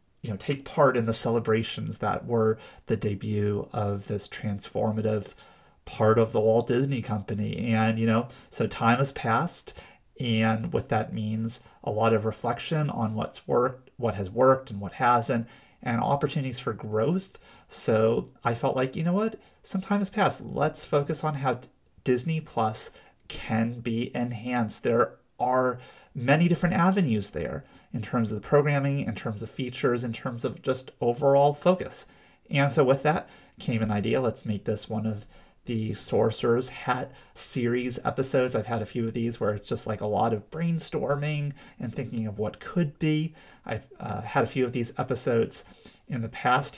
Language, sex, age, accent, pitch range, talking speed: English, male, 30-49, American, 110-140 Hz, 175 wpm